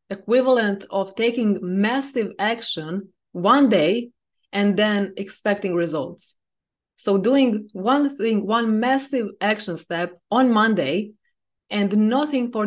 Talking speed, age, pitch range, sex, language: 115 wpm, 20-39, 185-235 Hz, female, English